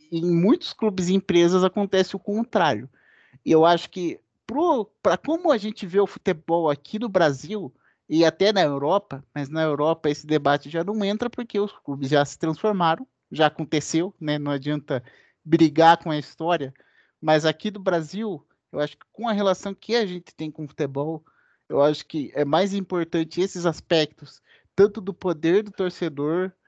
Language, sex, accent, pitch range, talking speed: Portuguese, male, Brazilian, 155-210 Hz, 180 wpm